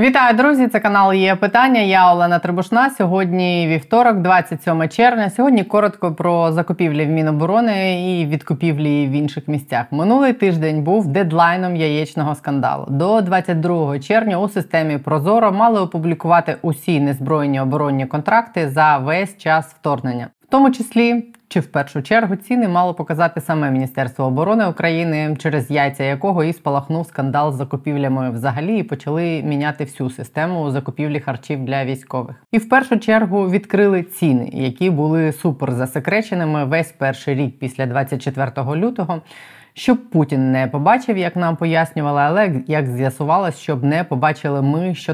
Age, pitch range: 20-39, 145-190 Hz